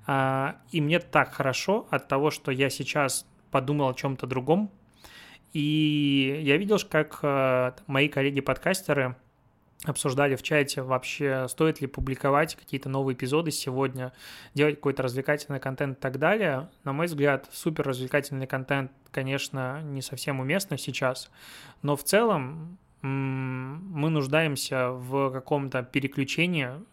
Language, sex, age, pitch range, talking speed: Russian, male, 20-39, 130-150 Hz, 125 wpm